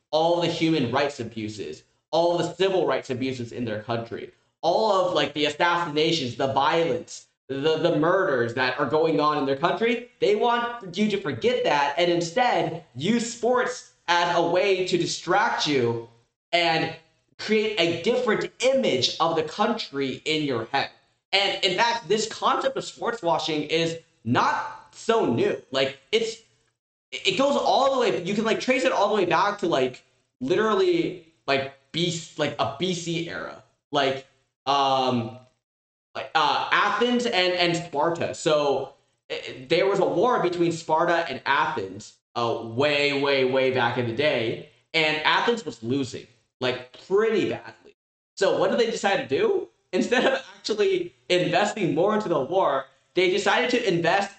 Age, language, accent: 20-39, English, American